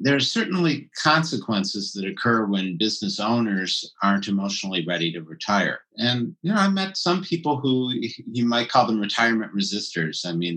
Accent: American